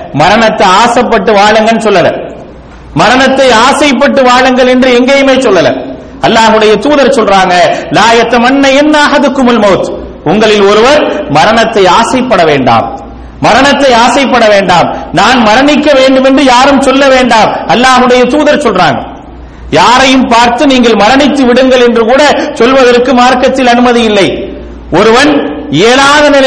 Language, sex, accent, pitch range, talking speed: English, male, Indian, 220-275 Hz, 95 wpm